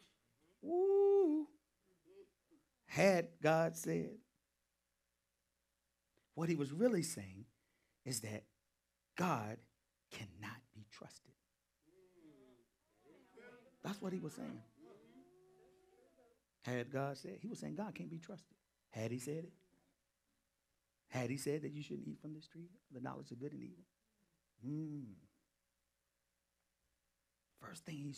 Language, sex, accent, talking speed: English, male, American, 115 wpm